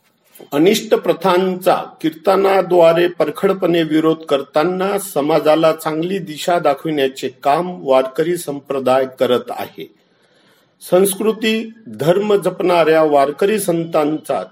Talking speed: 85 wpm